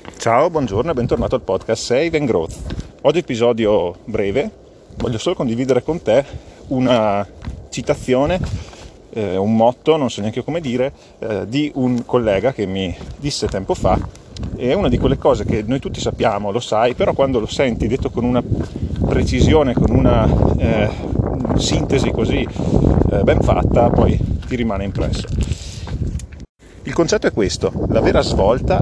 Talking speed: 150 wpm